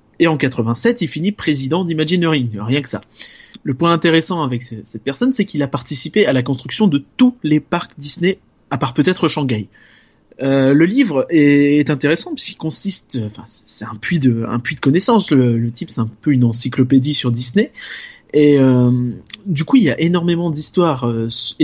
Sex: male